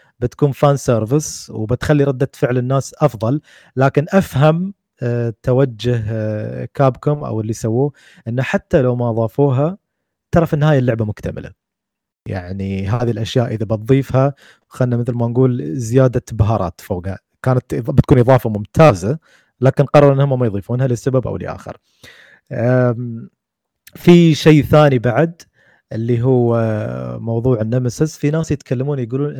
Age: 30-49